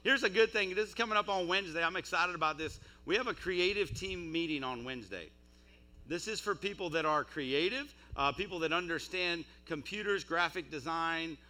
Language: English